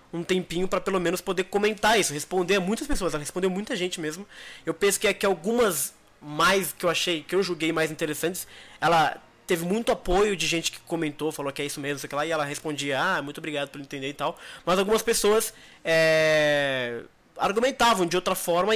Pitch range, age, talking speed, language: 150-195 Hz, 20-39, 210 wpm, Portuguese